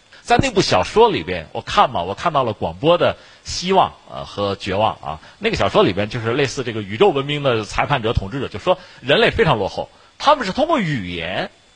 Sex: male